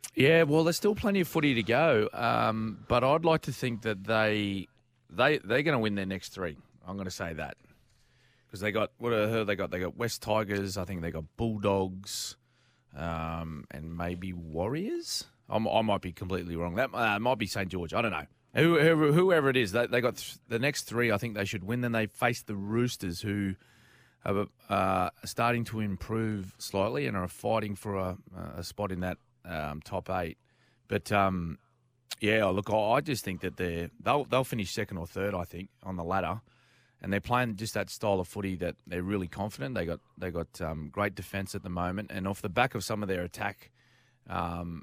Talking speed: 210 wpm